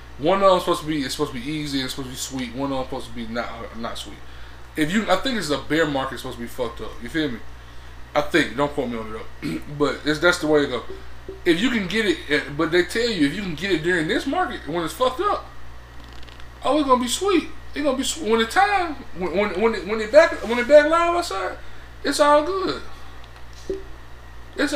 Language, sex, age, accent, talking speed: English, male, 20-39, American, 260 wpm